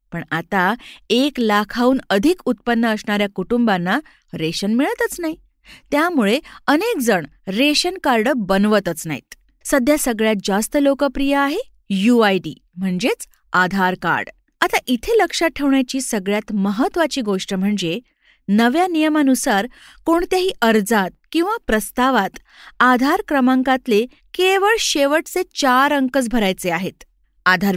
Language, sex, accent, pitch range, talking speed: Marathi, female, native, 195-280 Hz, 110 wpm